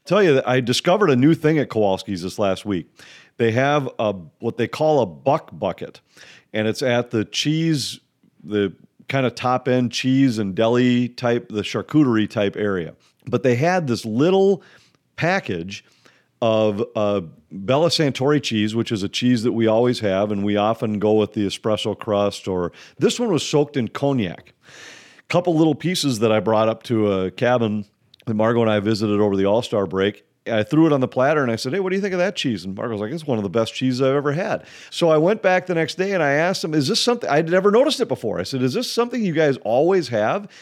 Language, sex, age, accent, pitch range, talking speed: English, male, 40-59, American, 110-150 Hz, 225 wpm